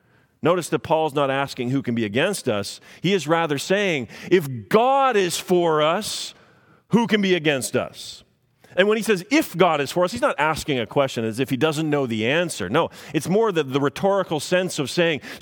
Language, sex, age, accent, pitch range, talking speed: English, male, 40-59, American, 125-185 Hz, 210 wpm